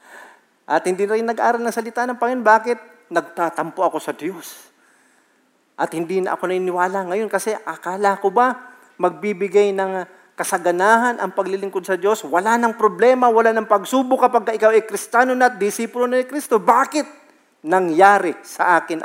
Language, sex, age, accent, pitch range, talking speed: Filipino, male, 50-69, native, 185-235 Hz, 160 wpm